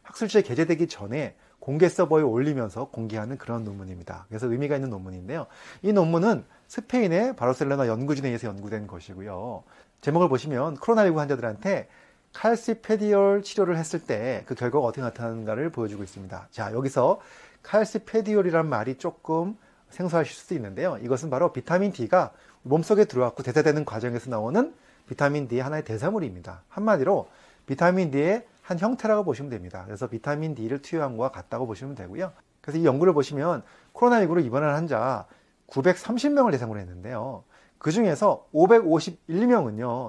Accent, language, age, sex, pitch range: native, Korean, 30-49, male, 125-200 Hz